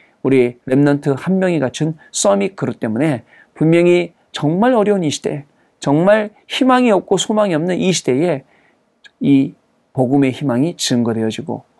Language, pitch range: Korean, 135-195 Hz